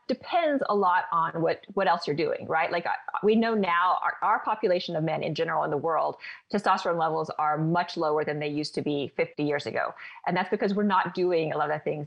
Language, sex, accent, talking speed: English, female, American, 245 wpm